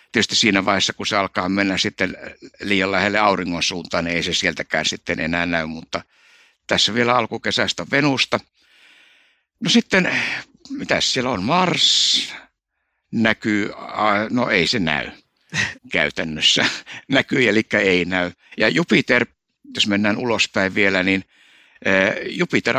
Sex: male